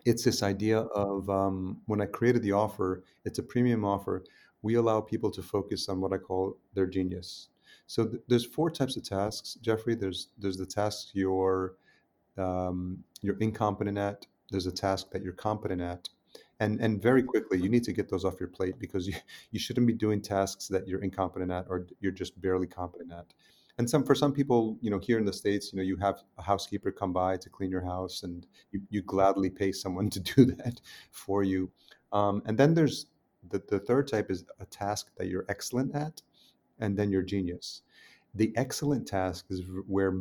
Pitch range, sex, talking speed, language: 95-110 Hz, male, 205 wpm, English